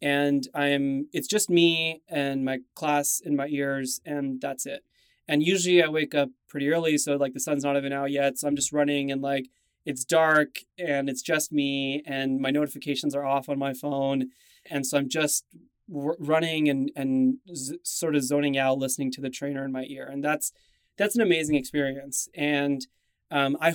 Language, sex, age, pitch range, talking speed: English, male, 20-39, 140-160 Hz, 195 wpm